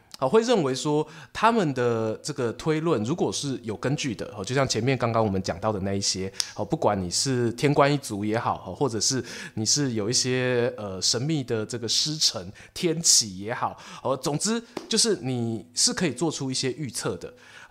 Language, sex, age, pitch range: Chinese, male, 20-39, 110-160 Hz